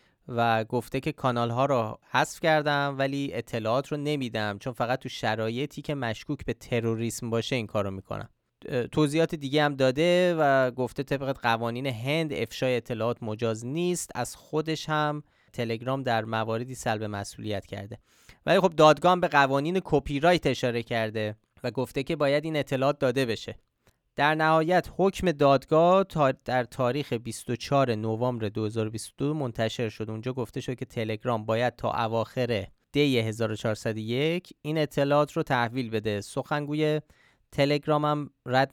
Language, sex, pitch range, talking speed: Persian, male, 115-145 Hz, 145 wpm